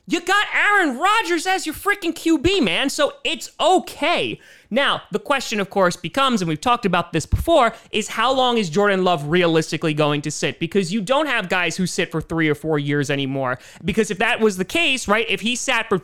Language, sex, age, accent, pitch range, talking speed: English, male, 30-49, American, 170-240 Hz, 215 wpm